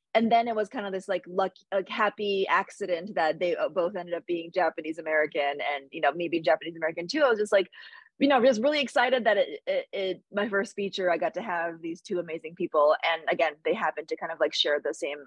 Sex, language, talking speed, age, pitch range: female, English, 250 wpm, 20-39, 170-215 Hz